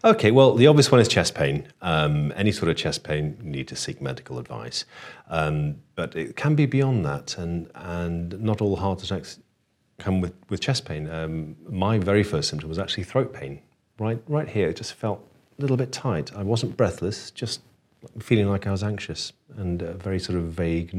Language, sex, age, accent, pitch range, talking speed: English, male, 40-59, British, 80-105 Hz, 205 wpm